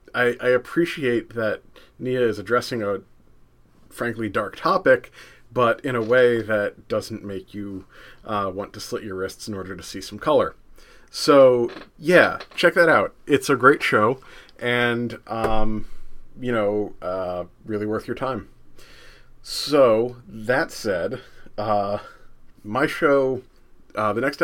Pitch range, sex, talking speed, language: 105-125 Hz, male, 140 wpm, English